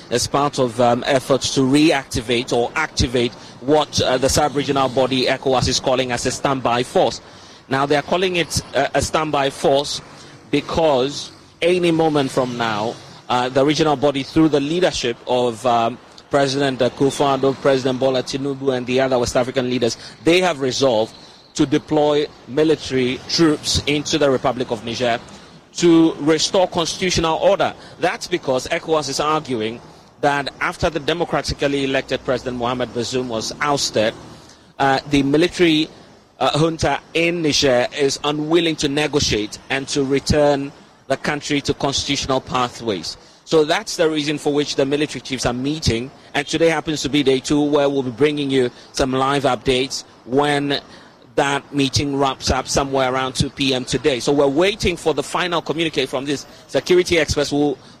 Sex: male